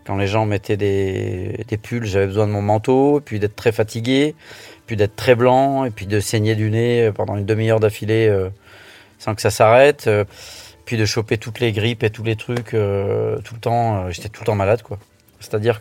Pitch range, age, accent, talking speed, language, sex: 105-125 Hz, 30-49, French, 220 wpm, French, male